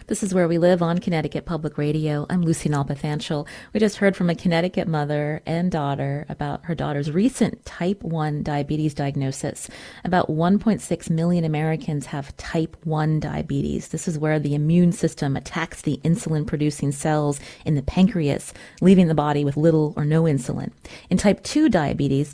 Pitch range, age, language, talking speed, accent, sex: 150-190 Hz, 30-49, English, 165 wpm, American, female